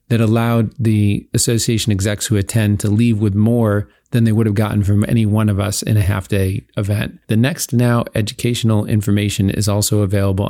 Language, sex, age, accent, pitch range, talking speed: English, male, 40-59, American, 105-125 Hz, 190 wpm